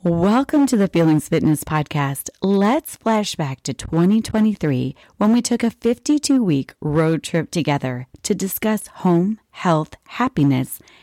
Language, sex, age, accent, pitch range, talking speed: English, female, 30-49, American, 150-220 Hz, 125 wpm